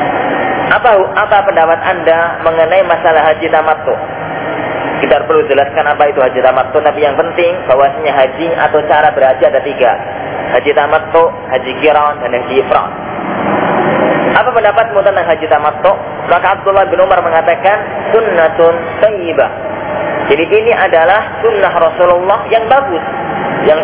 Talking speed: 130 wpm